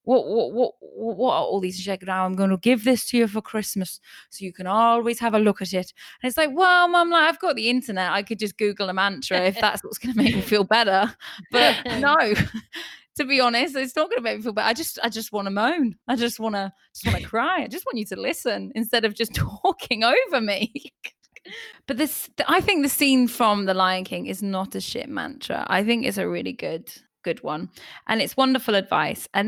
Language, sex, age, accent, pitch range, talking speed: English, female, 20-39, British, 200-260 Hz, 245 wpm